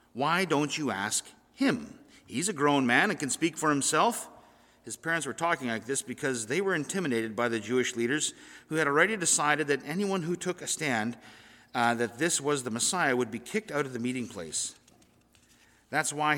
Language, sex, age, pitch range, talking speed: English, male, 50-69, 125-170 Hz, 200 wpm